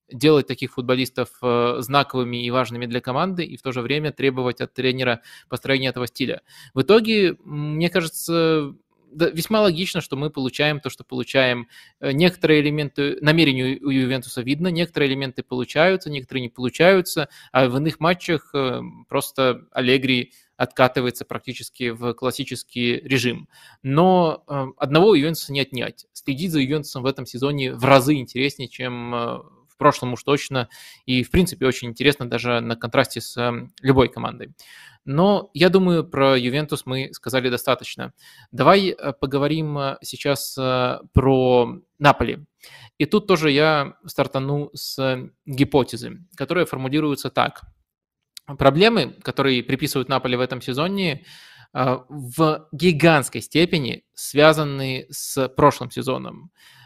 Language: Russian